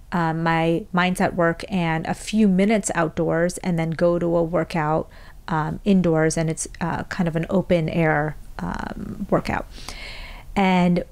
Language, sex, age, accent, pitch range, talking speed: English, female, 40-59, American, 170-205 Hz, 150 wpm